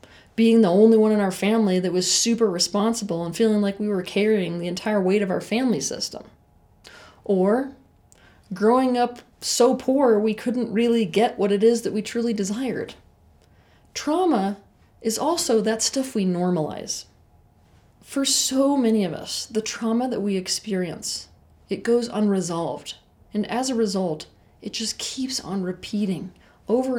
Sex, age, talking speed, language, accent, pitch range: female, 30-49, 155 wpm, English, American, 190-235 Hz